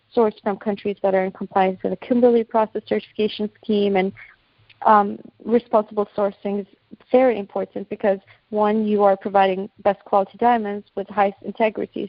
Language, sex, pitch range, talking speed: English, female, 200-225 Hz, 155 wpm